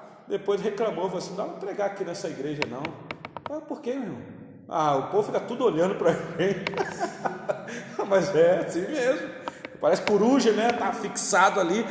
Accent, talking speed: Brazilian, 175 wpm